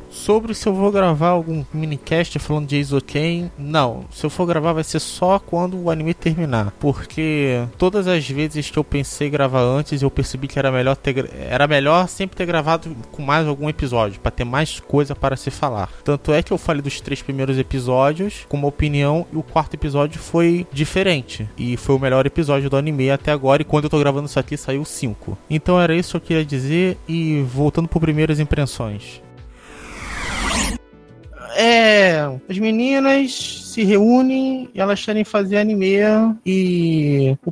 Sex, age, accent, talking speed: male, 20-39, Brazilian, 180 wpm